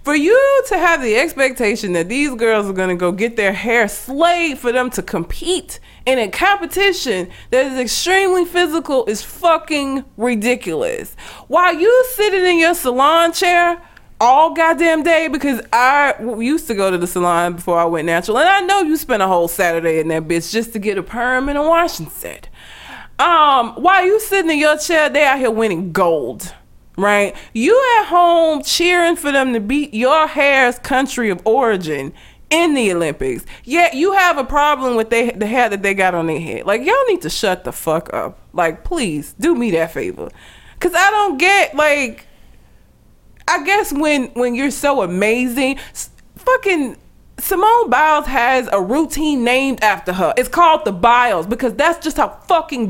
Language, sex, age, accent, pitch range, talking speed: English, female, 20-39, American, 225-345 Hz, 185 wpm